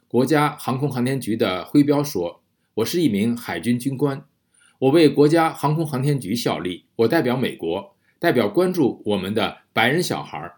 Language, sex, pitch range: Chinese, male, 110-160 Hz